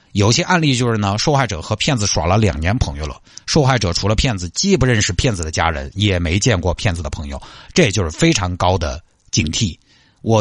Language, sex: Chinese, male